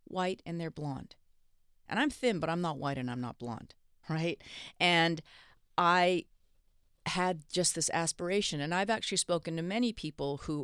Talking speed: 170 wpm